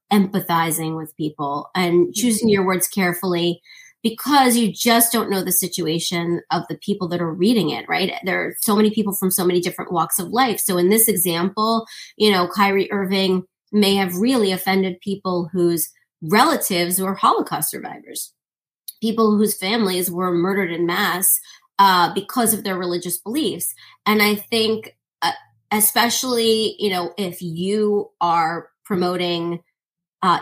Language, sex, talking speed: English, female, 155 wpm